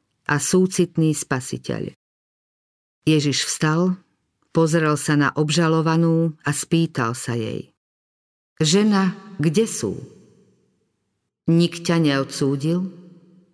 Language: Slovak